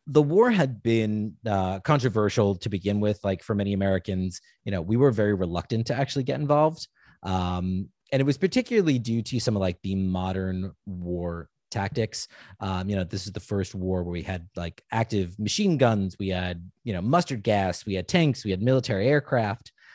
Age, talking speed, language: 30-49, 195 wpm, English